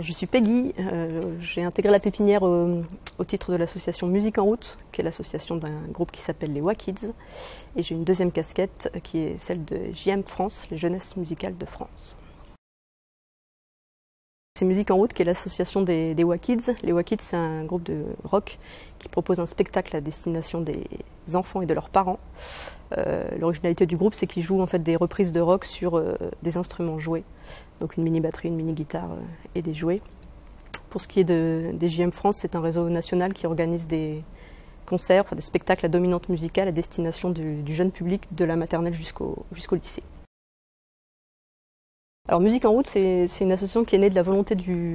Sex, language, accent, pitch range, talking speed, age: female, French, French, 165-190 Hz, 195 wpm, 30-49